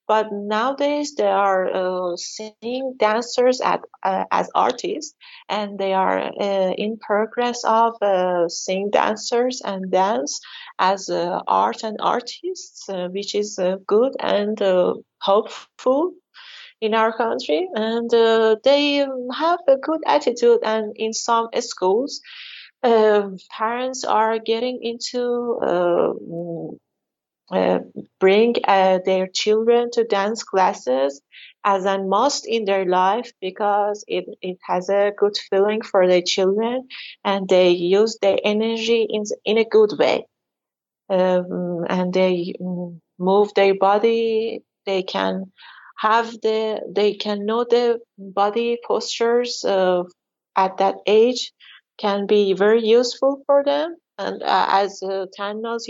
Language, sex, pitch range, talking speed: English, female, 195-235 Hz, 130 wpm